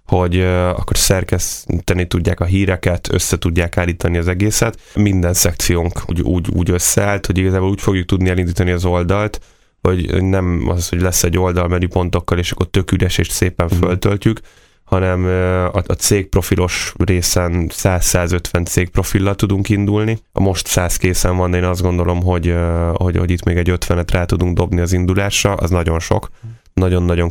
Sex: male